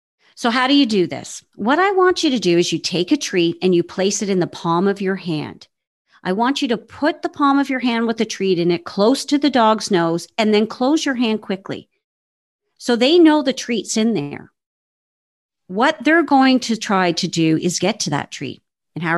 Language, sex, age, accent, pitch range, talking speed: English, female, 40-59, American, 175-255 Hz, 230 wpm